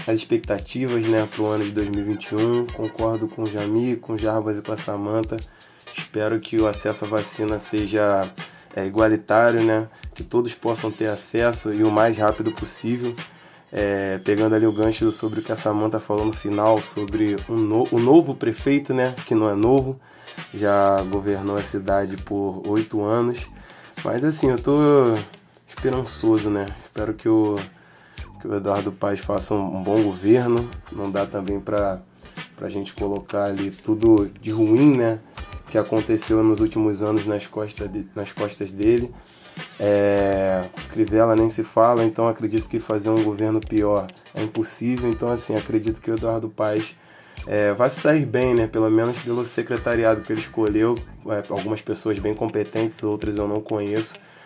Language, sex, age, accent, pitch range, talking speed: Portuguese, male, 20-39, Brazilian, 105-115 Hz, 170 wpm